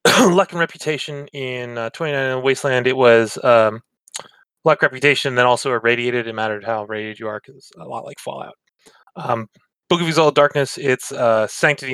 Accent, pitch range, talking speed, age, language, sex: American, 120-150 Hz, 175 wpm, 20-39, English, male